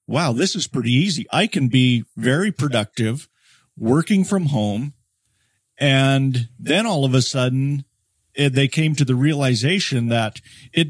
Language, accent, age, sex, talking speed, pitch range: English, American, 50-69, male, 145 wpm, 120-140 Hz